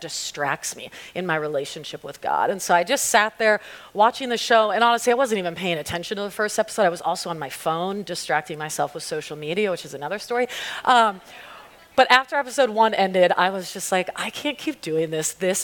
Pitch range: 175-225 Hz